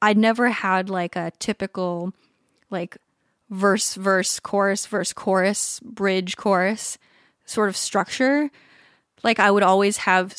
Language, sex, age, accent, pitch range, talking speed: English, female, 20-39, American, 185-210 Hz, 125 wpm